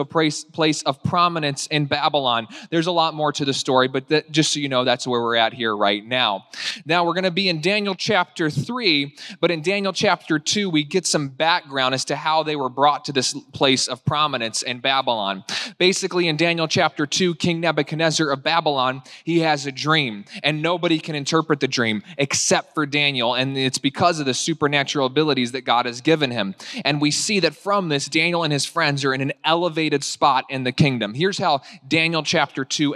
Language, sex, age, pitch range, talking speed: English, male, 20-39, 140-170 Hz, 205 wpm